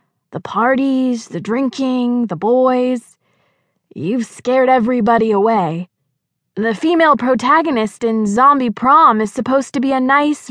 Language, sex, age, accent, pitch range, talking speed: English, female, 20-39, American, 195-275 Hz, 125 wpm